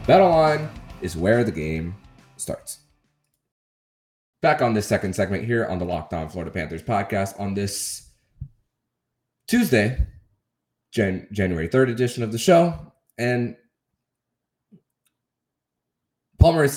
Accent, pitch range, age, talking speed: American, 90-120 Hz, 20-39, 110 wpm